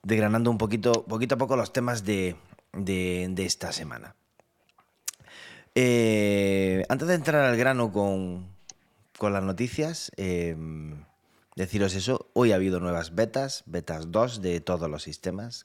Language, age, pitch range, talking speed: Spanish, 30-49, 80-105 Hz, 140 wpm